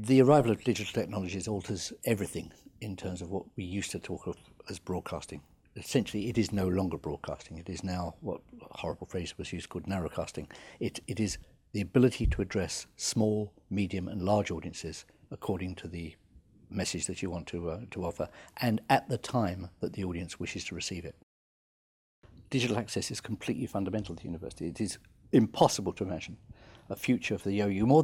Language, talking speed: English, 185 wpm